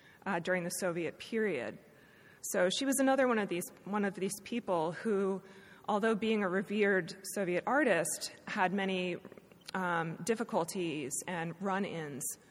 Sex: female